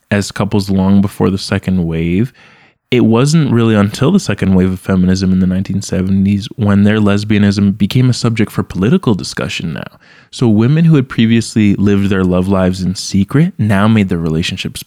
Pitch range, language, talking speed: 95-110 Hz, English, 180 wpm